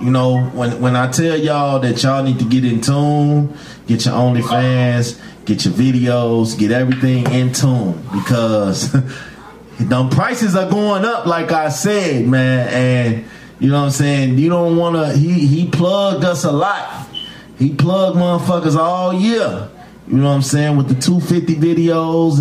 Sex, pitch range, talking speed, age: male, 125-170 Hz, 170 wpm, 30-49